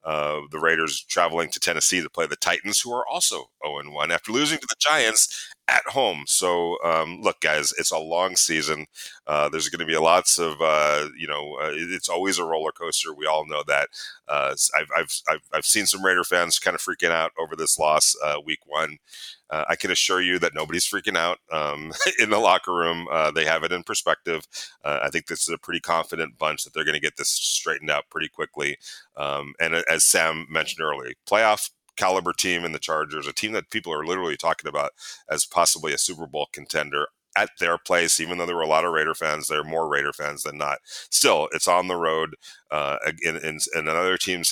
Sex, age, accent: male, 30-49, American